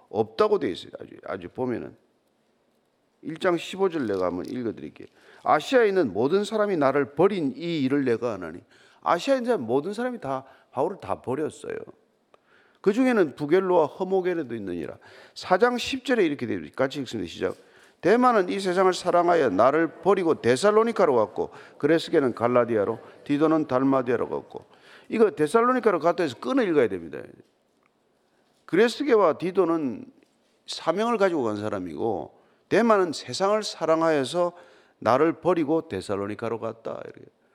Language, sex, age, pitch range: Korean, male, 50-69, 155-235 Hz